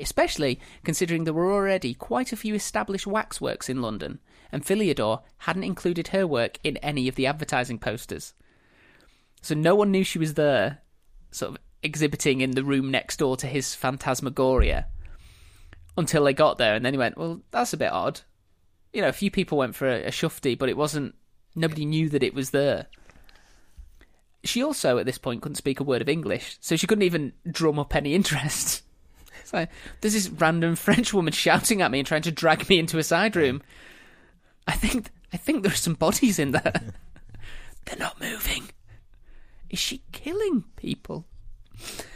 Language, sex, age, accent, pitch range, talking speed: English, male, 30-49, British, 130-180 Hz, 180 wpm